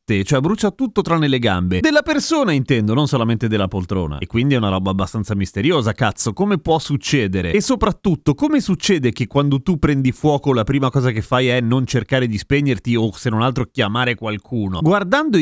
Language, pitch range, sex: Italian, 120-190 Hz, male